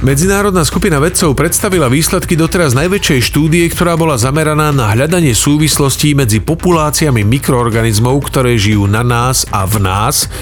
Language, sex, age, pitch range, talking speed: Slovak, male, 40-59, 115-145 Hz, 140 wpm